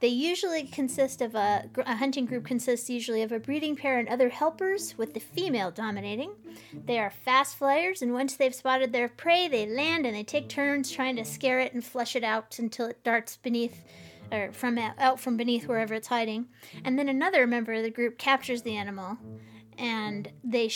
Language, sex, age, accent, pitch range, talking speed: English, female, 30-49, American, 215-270 Hz, 200 wpm